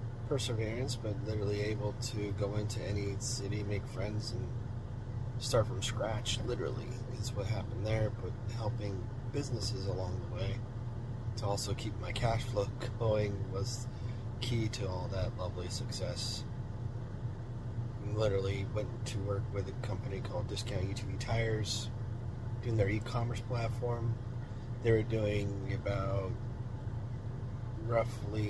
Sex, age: male, 30-49